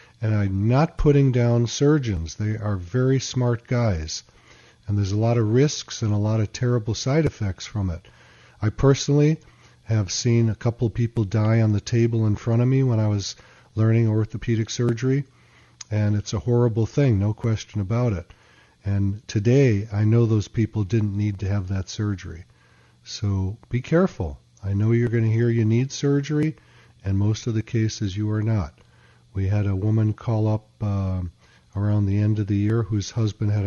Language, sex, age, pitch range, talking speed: English, male, 40-59, 100-120 Hz, 185 wpm